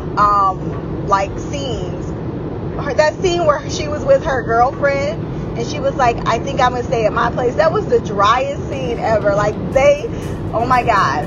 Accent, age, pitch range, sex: American, 20-39, 160-235 Hz, female